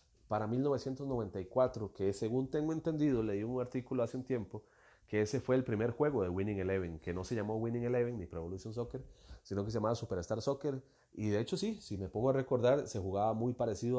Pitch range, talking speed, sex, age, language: 95-125 Hz, 210 wpm, male, 30-49, Spanish